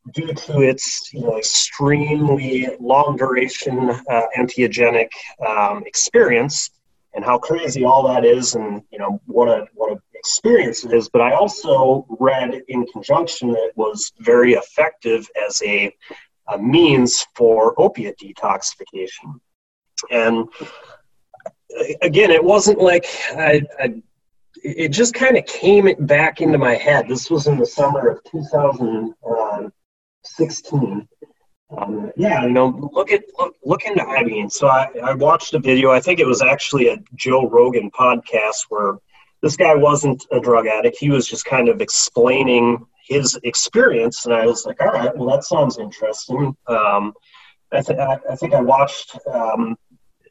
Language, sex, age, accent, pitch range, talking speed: English, male, 30-49, American, 120-160 Hz, 155 wpm